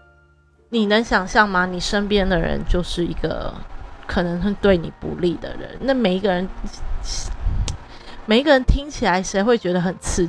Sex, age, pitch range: female, 20-39, 170-215 Hz